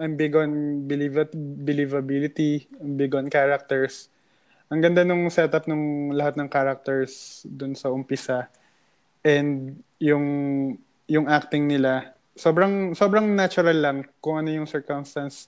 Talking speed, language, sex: 125 wpm, English, male